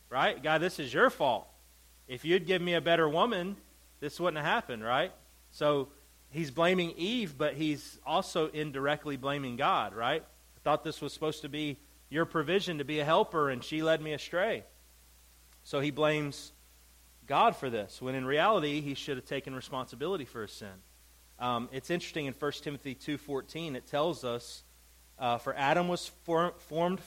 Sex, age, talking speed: male, 30-49, 175 wpm